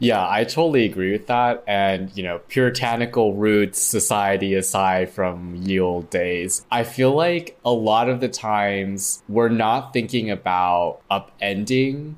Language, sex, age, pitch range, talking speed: English, male, 20-39, 90-115 Hz, 150 wpm